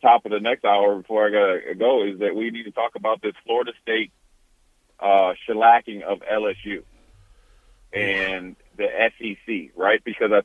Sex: male